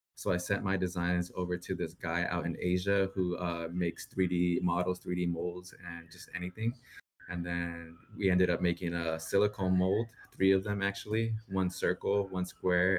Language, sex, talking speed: English, male, 180 wpm